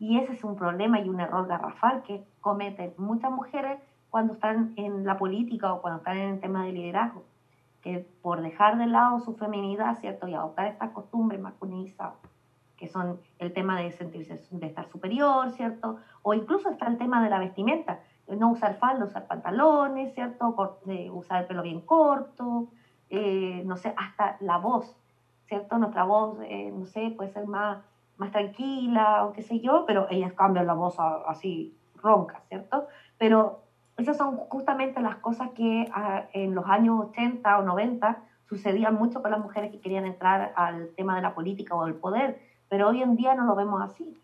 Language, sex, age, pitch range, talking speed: English, female, 30-49, 185-235 Hz, 185 wpm